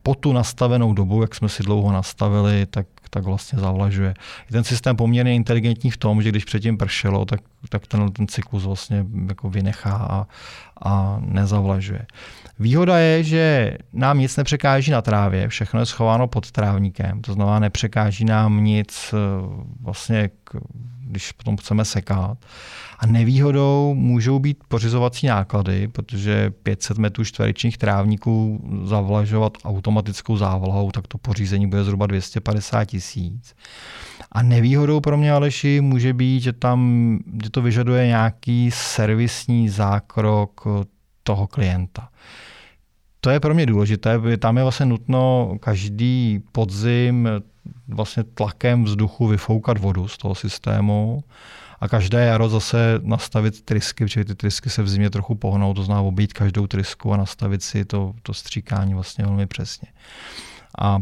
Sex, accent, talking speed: male, native, 140 wpm